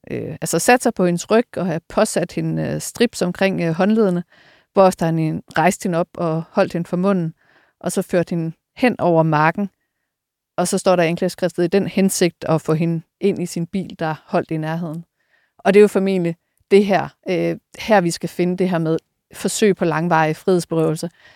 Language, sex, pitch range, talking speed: Danish, female, 160-190 Hz, 200 wpm